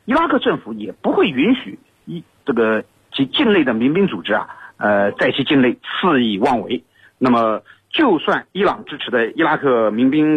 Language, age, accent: Chinese, 50-69, native